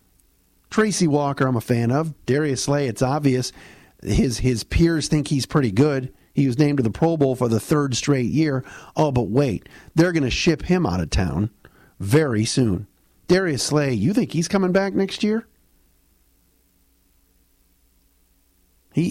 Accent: American